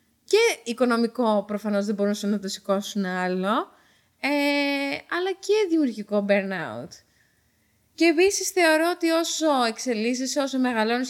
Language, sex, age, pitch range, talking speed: Greek, female, 20-39, 195-260 Hz, 120 wpm